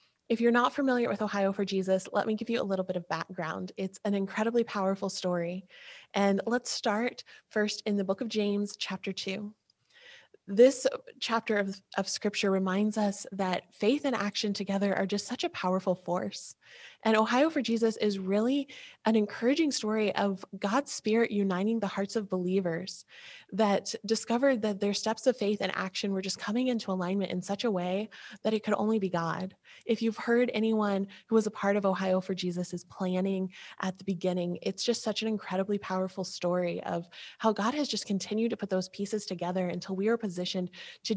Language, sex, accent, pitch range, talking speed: English, female, American, 190-220 Hz, 190 wpm